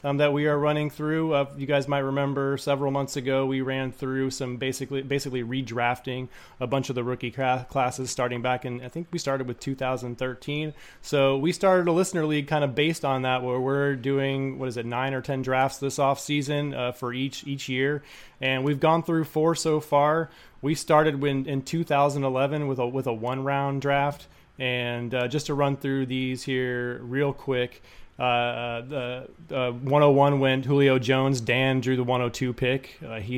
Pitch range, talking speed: 130-145 Hz, 190 wpm